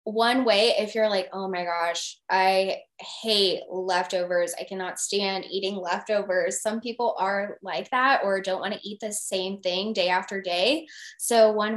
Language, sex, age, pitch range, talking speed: English, female, 10-29, 185-225 Hz, 175 wpm